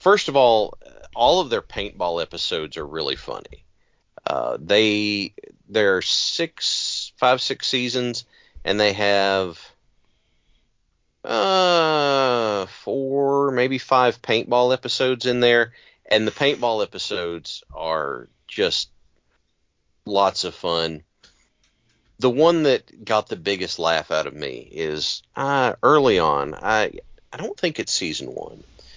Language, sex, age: English, male, 40-59